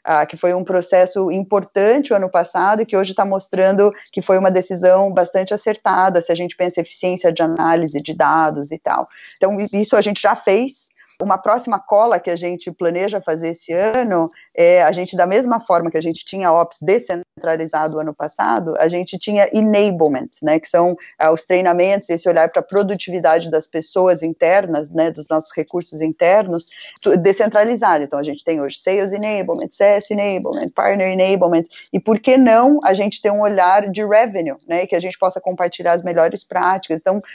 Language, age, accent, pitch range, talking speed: Portuguese, 20-39, Brazilian, 170-210 Hz, 190 wpm